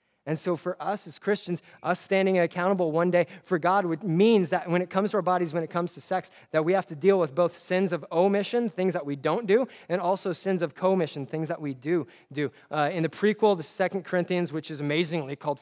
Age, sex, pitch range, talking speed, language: 20-39, male, 155-185 Hz, 240 wpm, English